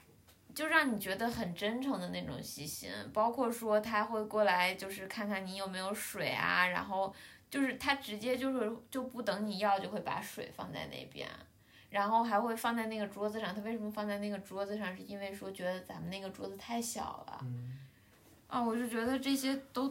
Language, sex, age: Chinese, female, 20-39